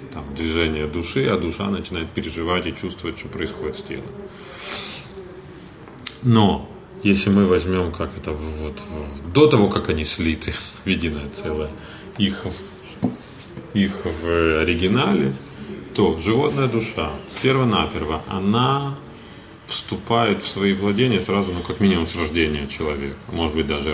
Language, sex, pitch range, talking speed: Russian, male, 80-110 Hz, 130 wpm